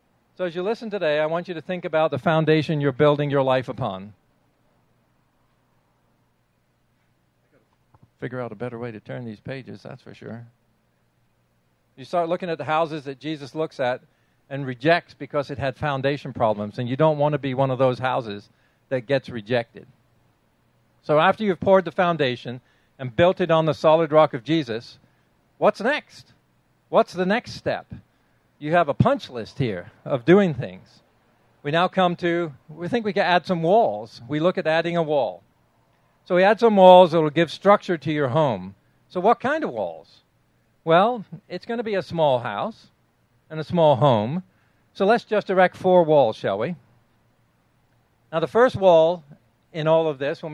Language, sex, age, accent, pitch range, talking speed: English, male, 50-69, American, 125-175 Hz, 180 wpm